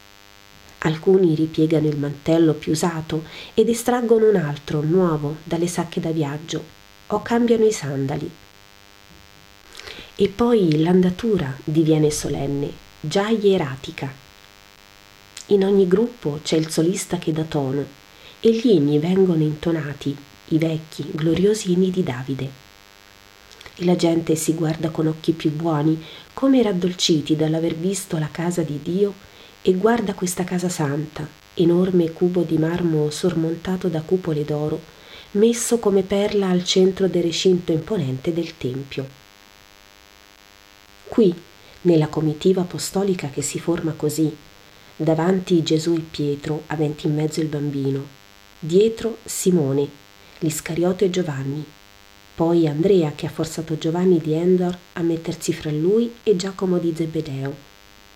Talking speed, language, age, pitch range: 130 wpm, Italian, 30-49, 140-180 Hz